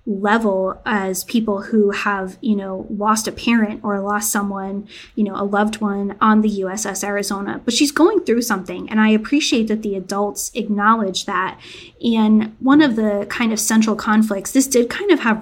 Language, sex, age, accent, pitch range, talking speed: English, female, 10-29, American, 200-230 Hz, 185 wpm